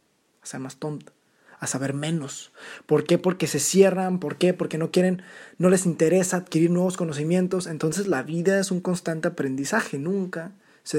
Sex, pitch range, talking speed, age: male, 150-190 Hz, 170 wpm, 20-39